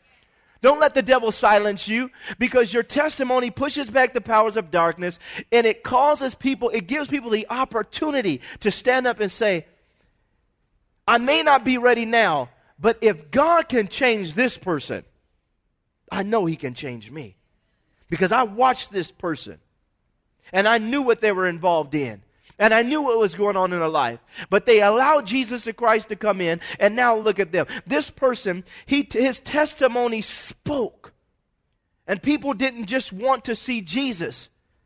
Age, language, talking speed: 40-59, English, 165 wpm